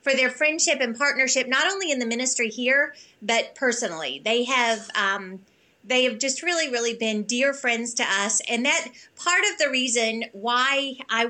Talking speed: 180 wpm